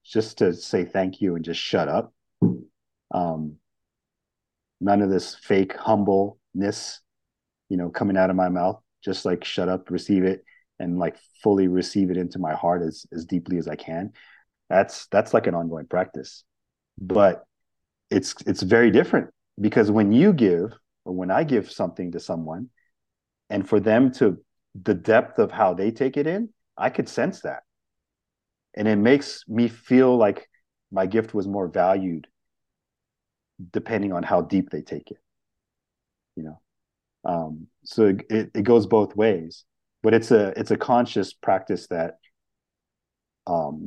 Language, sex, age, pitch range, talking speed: English, male, 40-59, 90-105 Hz, 160 wpm